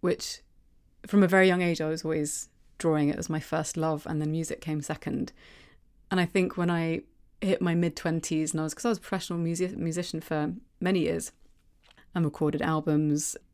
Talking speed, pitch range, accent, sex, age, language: 190 wpm, 155-180 Hz, British, female, 30-49, Dutch